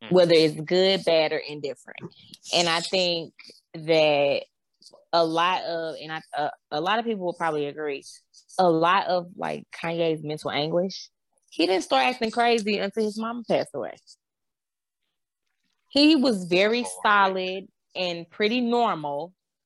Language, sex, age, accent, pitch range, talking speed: English, female, 20-39, American, 160-225 Hz, 145 wpm